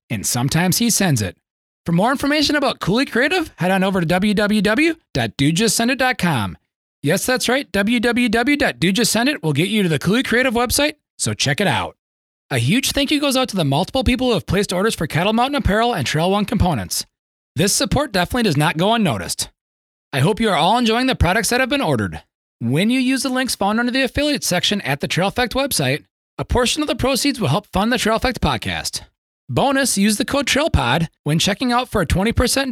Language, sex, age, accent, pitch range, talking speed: English, male, 30-49, American, 165-250 Hz, 205 wpm